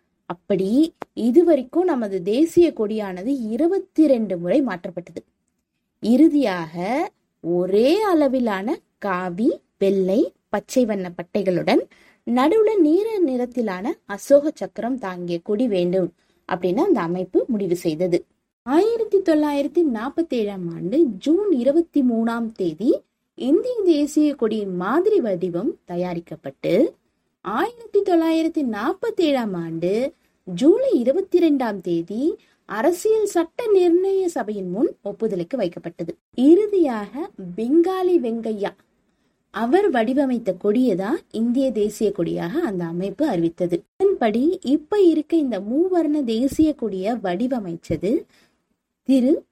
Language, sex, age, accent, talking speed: Tamil, female, 20-39, native, 85 wpm